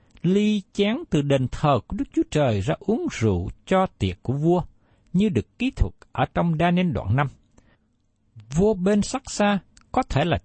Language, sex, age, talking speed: Vietnamese, male, 60-79, 190 wpm